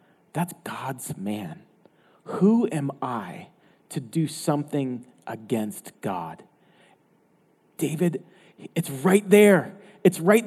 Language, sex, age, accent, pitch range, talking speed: English, male, 40-59, American, 140-185 Hz, 95 wpm